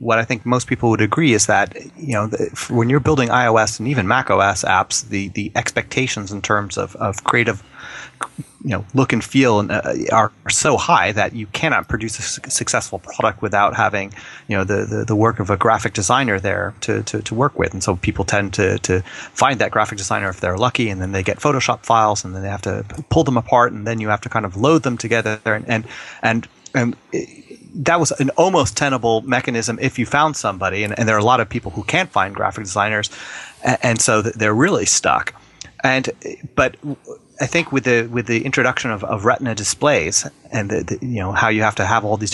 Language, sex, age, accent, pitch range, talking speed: English, male, 30-49, American, 105-130 Hz, 225 wpm